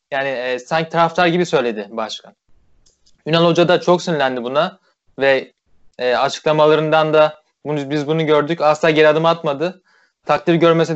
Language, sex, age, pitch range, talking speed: Turkish, male, 20-39, 140-170 Hz, 150 wpm